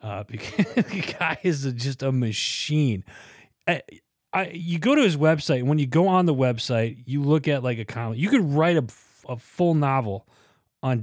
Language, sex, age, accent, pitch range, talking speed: English, male, 30-49, American, 115-155 Hz, 205 wpm